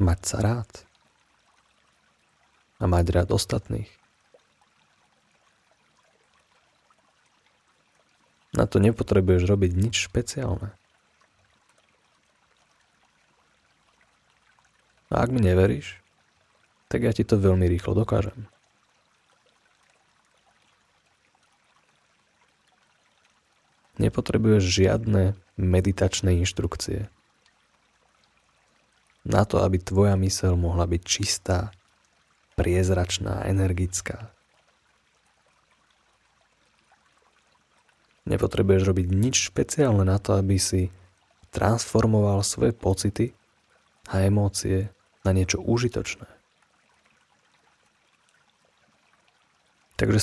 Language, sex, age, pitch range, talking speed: Slovak, male, 30-49, 95-110 Hz, 65 wpm